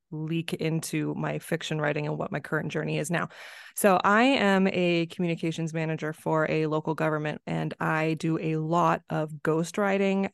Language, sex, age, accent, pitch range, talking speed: English, female, 20-39, American, 165-200 Hz, 175 wpm